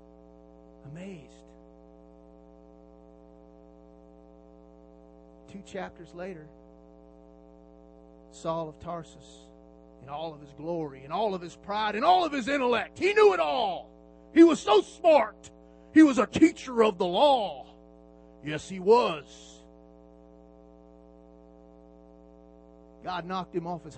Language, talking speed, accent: English, 115 wpm, American